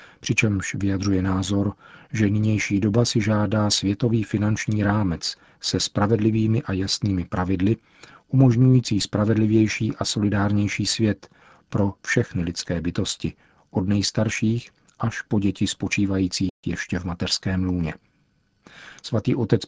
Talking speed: 115 wpm